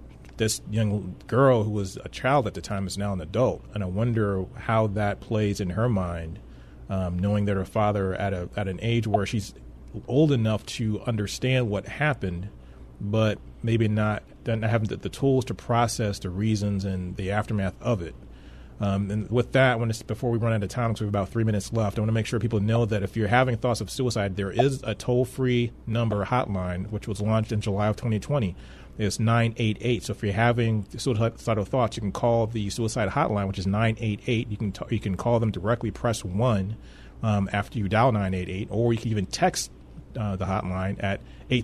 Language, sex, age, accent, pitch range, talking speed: English, male, 30-49, American, 95-115 Hz, 210 wpm